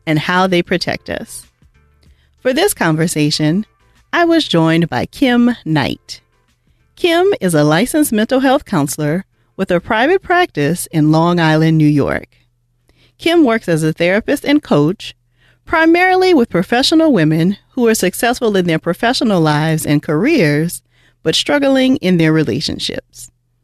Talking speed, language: 140 wpm, English